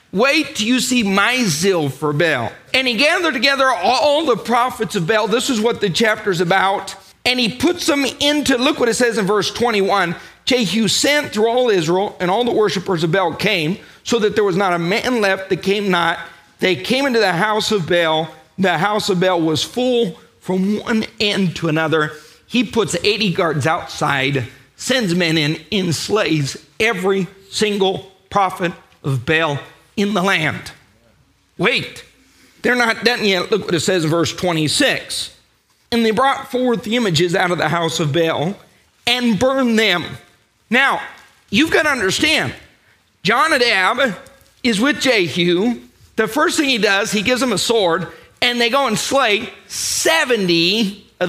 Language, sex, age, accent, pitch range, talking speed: English, male, 40-59, American, 180-245 Hz, 170 wpm